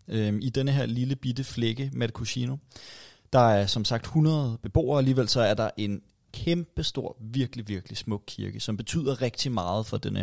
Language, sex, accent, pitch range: Danish, male, native, 100-130 Hz